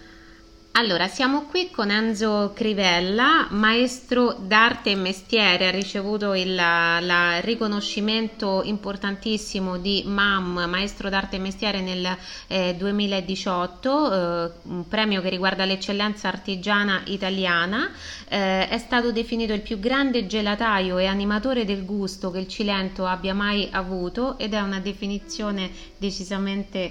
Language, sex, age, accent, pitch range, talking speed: Italian, female, 20-39, native, 190-225 Hz, 130 wpm